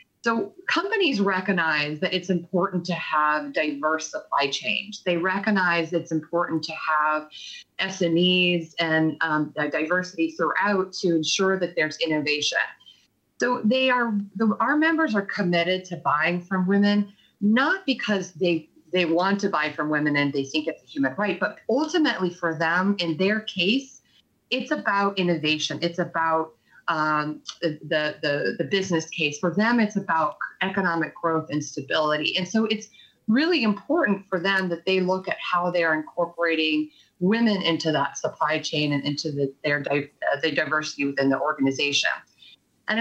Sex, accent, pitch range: female, American, 155-205 Hz